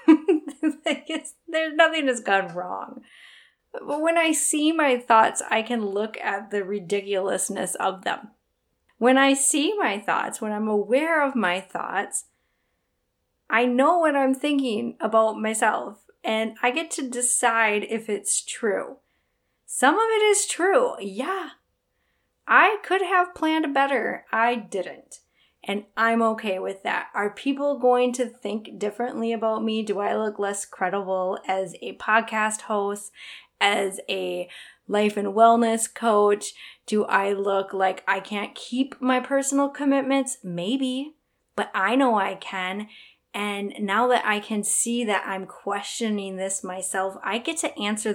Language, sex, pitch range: English, female, 200-275 Hz